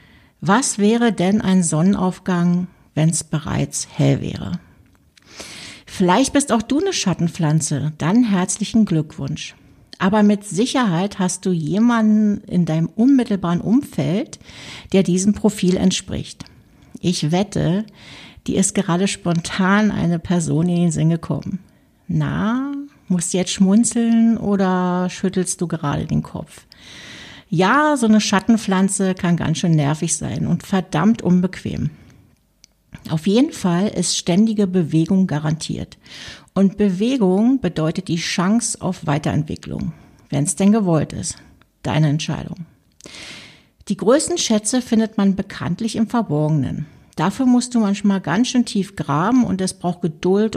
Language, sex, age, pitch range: German, female, 60-79, 170-215 Hz